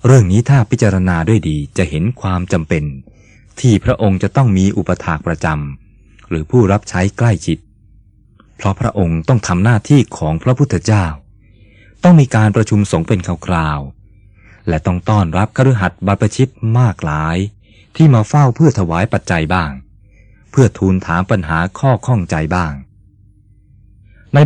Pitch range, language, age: 90-110 Hz, Thai, 20-39